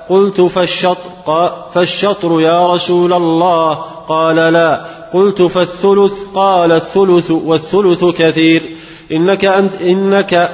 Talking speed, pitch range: 95 wpm, 165-180 Hz